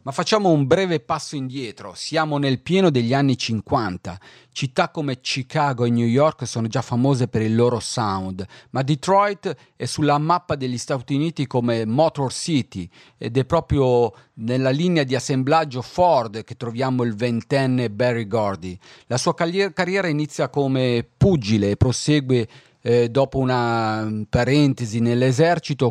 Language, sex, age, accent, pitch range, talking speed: Italian, male, 40-59, native, 115-150 Hz, 145 wpm